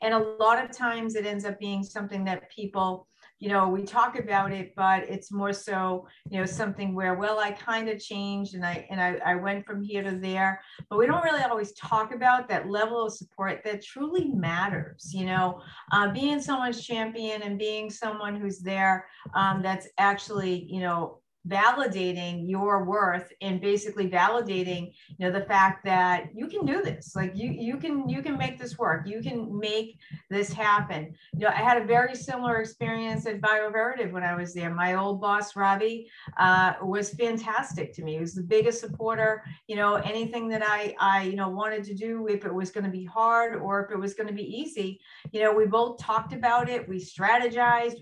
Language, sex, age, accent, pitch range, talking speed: English, female, 40-59, American, 190-225 Hz, 205 wpm